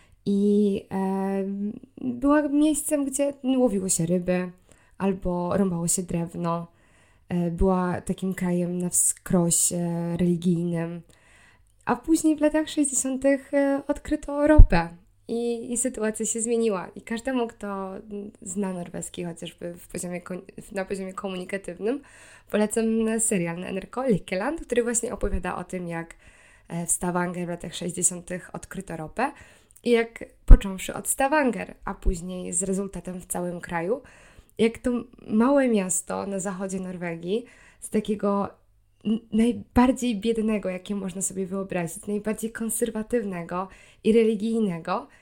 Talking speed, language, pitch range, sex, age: 120 wpm, Polish, 180-235 Hz, female, 20-39